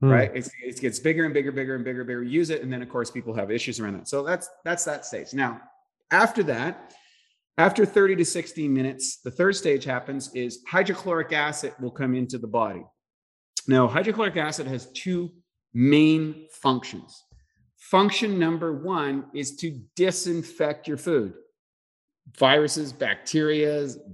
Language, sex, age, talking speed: English, male, 30-49, 160 wpm